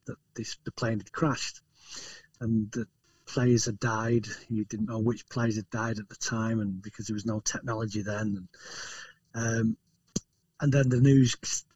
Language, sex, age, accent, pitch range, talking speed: Finnish, male, 40-59, British, 110-130 Hz, 175 wpm